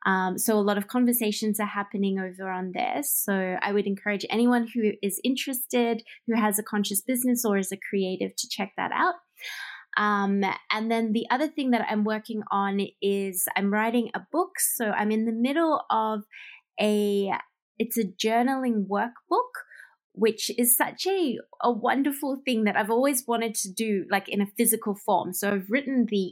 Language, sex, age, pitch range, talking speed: English, female, 20-39, 195-240 Hz, 180 wpm